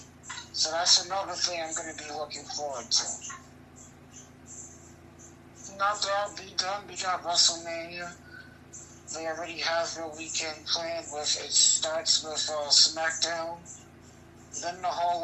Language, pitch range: English, 145-170 Hz